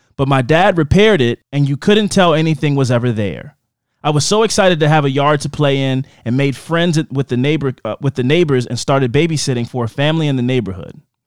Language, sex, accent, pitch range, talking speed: English, male, American, 125-170 Hz, 230 wpm